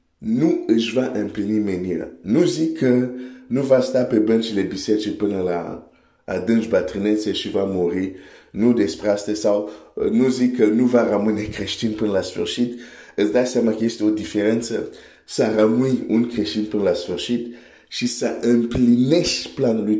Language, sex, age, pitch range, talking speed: Romanian, male, 50-69, 105-125 Hz, 160 wpm